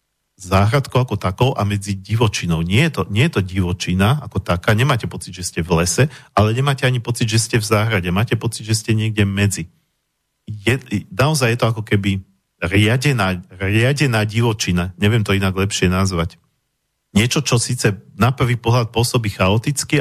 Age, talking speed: 40-59, 170 wpm